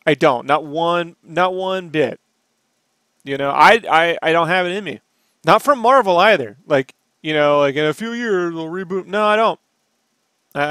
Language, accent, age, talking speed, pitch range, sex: English, American, 30-49, 195 wpm, 140-195 Hz, male